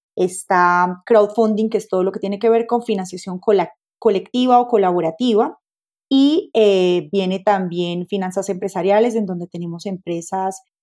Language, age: Spanish, 20-39